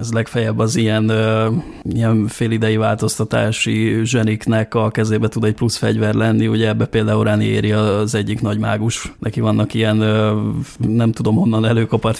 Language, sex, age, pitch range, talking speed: Hungarian, male, 20-39, 110-115 Hz, 155 wpm